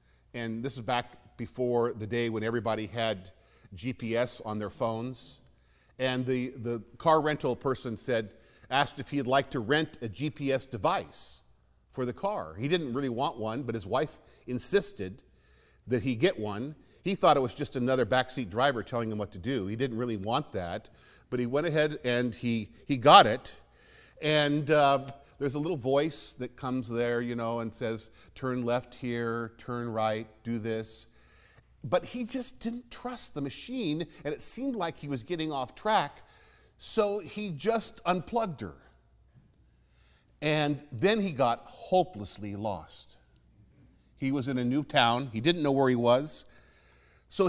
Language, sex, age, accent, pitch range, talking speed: English, male, 50-69, American, 115-155 Hz, 170 wpm